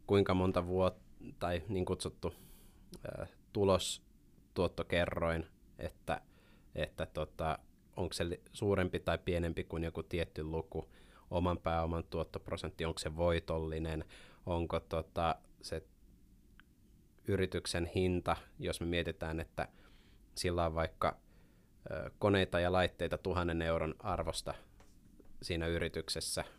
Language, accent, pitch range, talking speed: Finnish, native, 80-90 Hz, 105 wpm